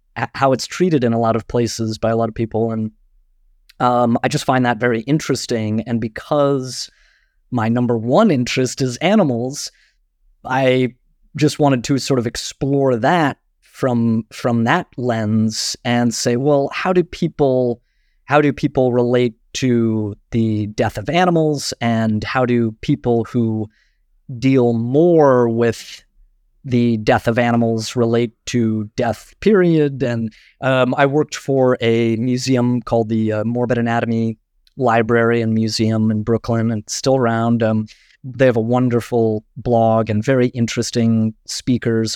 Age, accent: 30-49, American